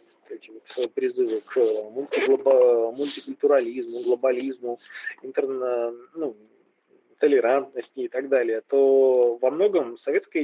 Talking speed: 100 wpm